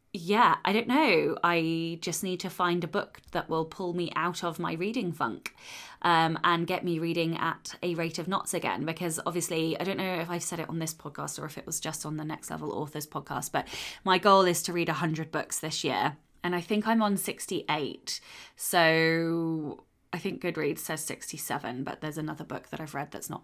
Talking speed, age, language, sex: 220 wpm, 20-39, English, female